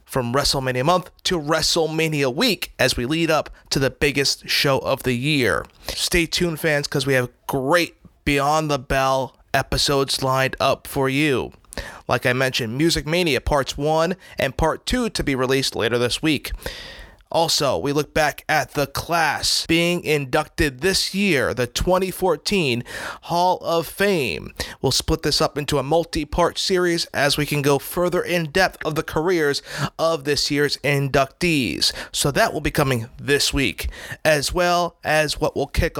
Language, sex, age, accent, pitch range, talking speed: English, male, 30-49, American, 130-165 Hz, 165 wpm